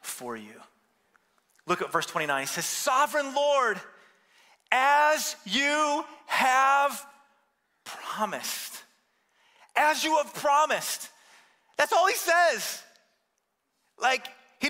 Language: English